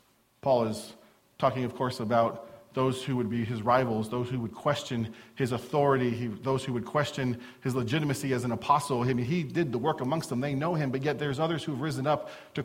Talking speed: 215 wpm